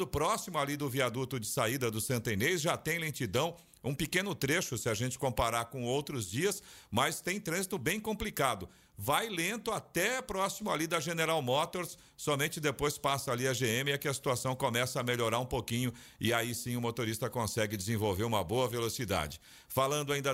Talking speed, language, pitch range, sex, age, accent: 185 wpm, Portuguese, 125-160 Hz, male, 50-69, Brazilian